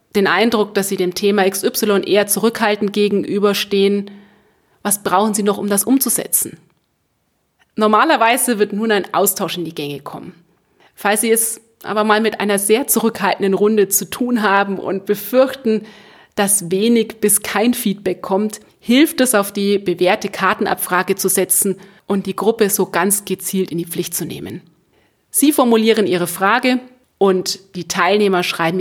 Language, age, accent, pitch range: German, 30-49, German, 185-220 Hz